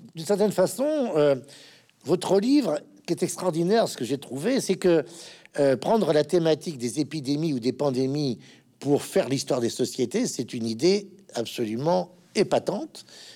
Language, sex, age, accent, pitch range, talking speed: French, male, 50-69, French, 145-225 Hz, 155 wpm